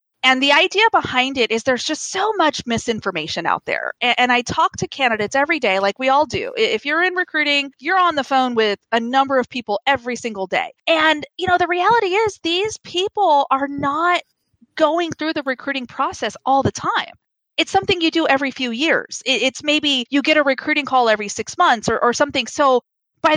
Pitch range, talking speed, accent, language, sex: 230-315 Hz, 210 wpm, American, English, female